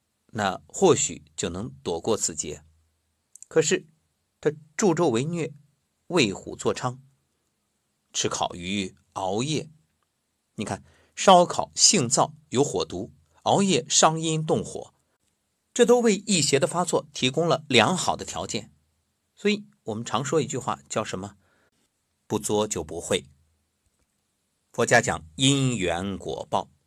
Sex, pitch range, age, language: male, 80-135 Hz, 50-69, Chinese